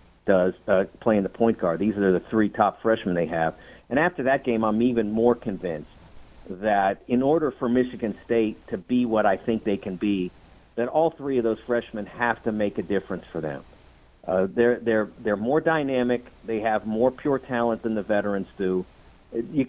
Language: English